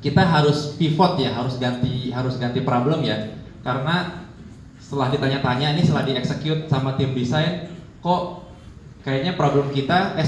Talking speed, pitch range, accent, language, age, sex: 140 wpm, 125-155 Hz, native, Indonesian, 20-39, male